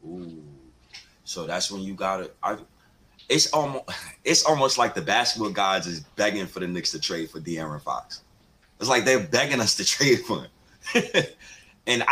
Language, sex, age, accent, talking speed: English, male, 30-49, American, 175 wpm